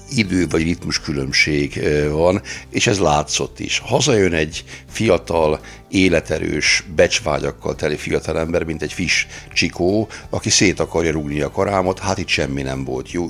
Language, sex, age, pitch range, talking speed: Hungarian, male, 60-79, 80-95 Hz, 150 wpm